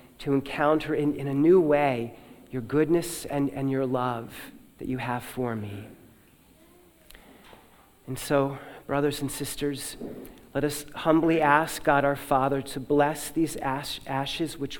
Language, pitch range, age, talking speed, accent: English, 130-155 Hz, 40-59, 140 wpm, American